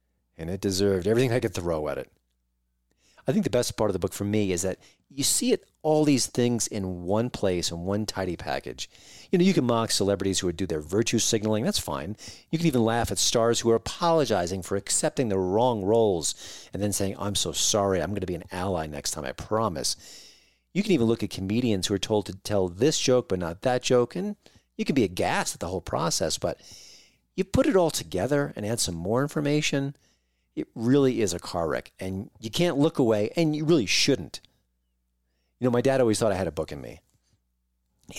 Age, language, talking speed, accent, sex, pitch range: 40-59, English, 225 wpm, American, male, 85-120 Hz